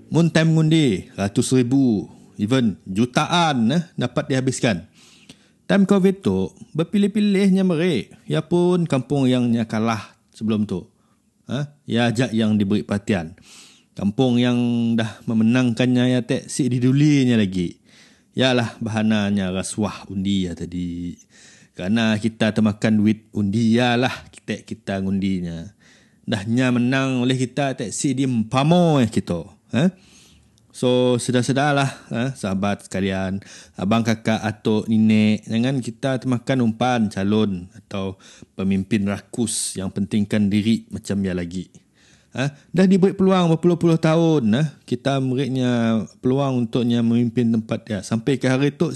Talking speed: 130 wpm